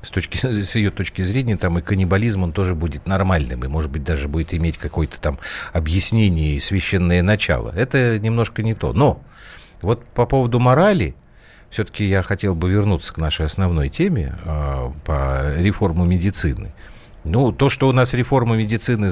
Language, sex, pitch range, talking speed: Russian, male, 85-115 Hz, 170 wpm